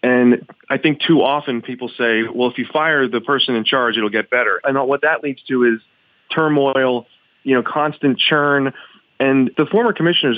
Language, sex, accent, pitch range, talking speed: English, male, American, 120-150 Hz, 190 wpm